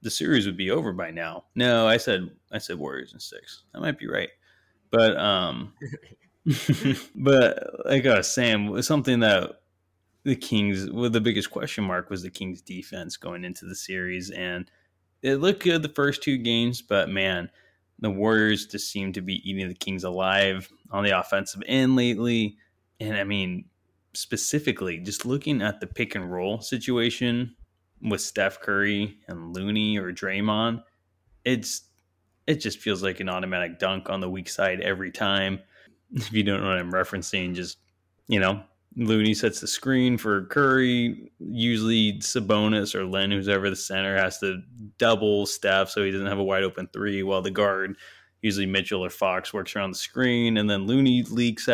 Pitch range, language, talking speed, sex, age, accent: 95-115 Hz, English, 175 wpm, male, 20-39, American